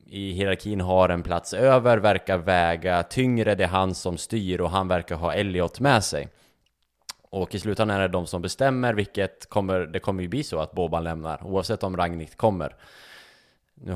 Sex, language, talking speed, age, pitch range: male, Swedish, 190 wpm, 20-39, 85-105 Hz